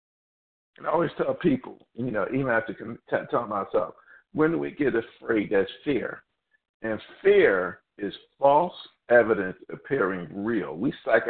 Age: 50-69